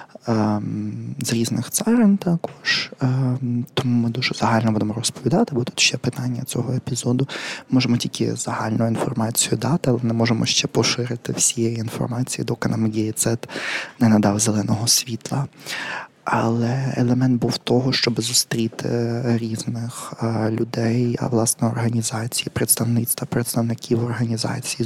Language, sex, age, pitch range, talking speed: Ukrainian, male, 20-39, 115-130 Hz, 120 wpm